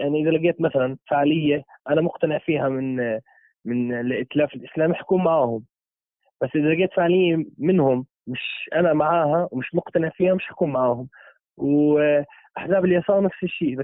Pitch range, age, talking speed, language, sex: 120-155 Hz, 20-39, 145 wpm, Arabic, male